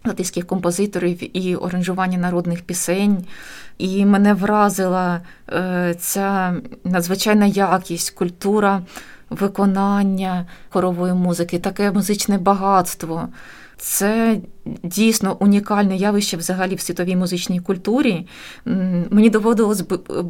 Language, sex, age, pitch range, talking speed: Ukrainian, female, 20-39, 180-210 Hz, 90 wpm